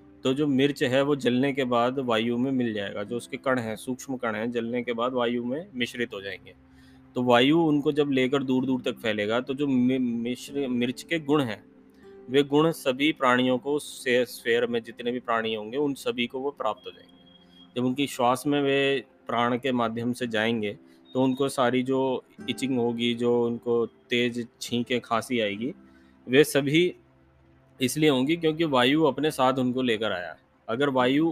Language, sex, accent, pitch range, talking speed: Hindi, male, native, 115-140 Hz, 185 wpm